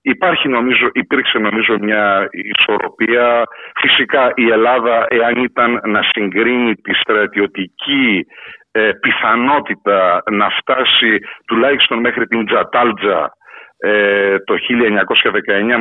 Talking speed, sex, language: 90 wpm, male, Greek